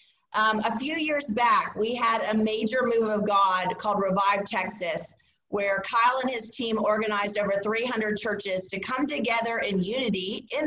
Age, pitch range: 30-49, 210-250 Hz